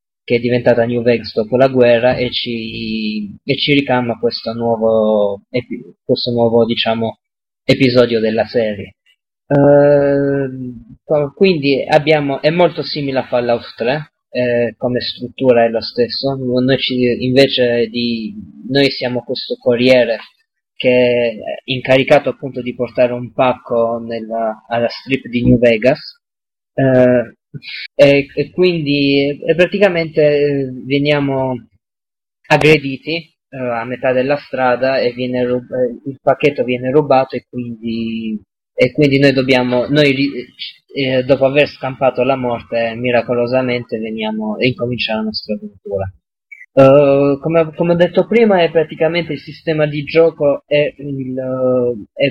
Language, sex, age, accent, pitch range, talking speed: Italian, male, 20-39, native, 120-140 Hz, 130 wpm